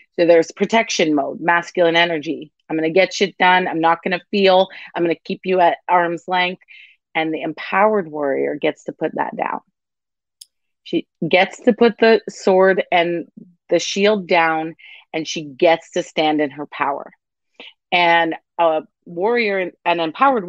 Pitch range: 165-195 Hz